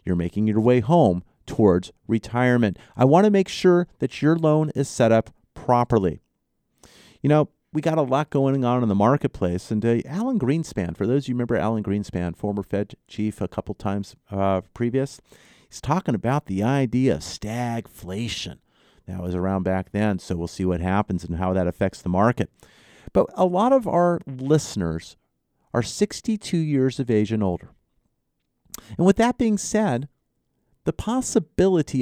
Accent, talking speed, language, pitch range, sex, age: American, 175 wpm, English, 105-155 Hz, male, 40-59